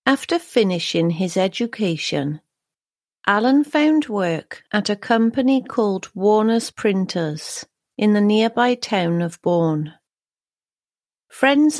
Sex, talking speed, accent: female, 100 wpm, British